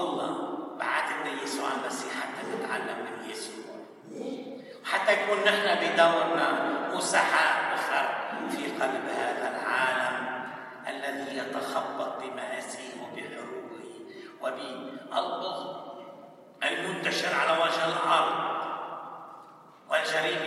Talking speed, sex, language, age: 85 wpm, male, English, 60-79